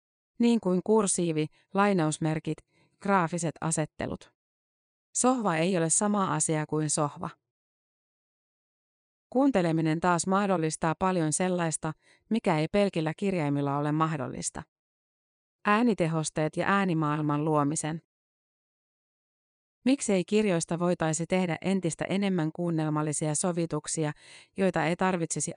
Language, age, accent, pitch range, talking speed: Finnish, 30-49, native, 155-190 Hz, 90 wpm